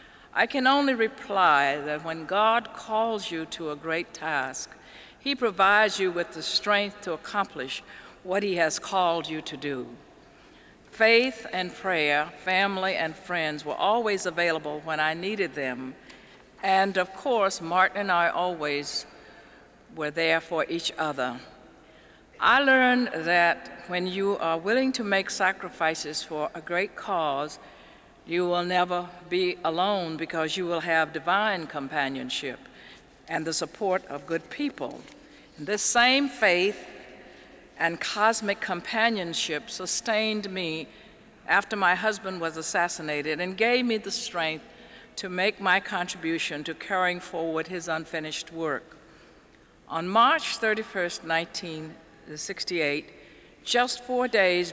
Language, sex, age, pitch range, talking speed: English, female, 60-79, 160-205 Hz, 130 wpm